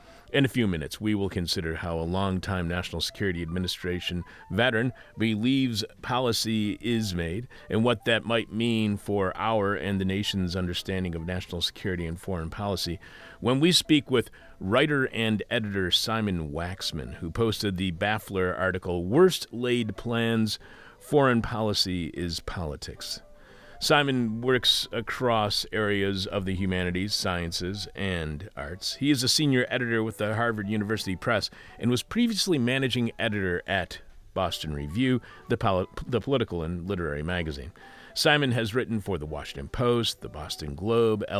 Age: 40-59